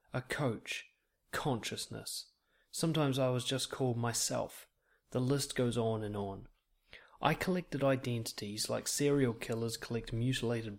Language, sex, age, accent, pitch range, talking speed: English, male, 30-49, Australian, 115-140 Hz, 130 wpm